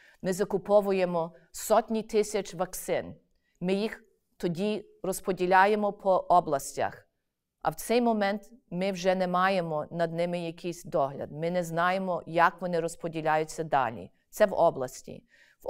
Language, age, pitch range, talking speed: Ukrainian, 40-59, 165-195 Hz, 130 wpm